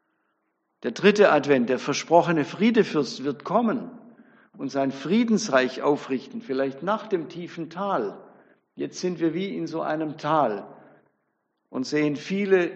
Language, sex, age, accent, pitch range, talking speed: German, male, 60-79, German, 135-190 Hz, 130 wpm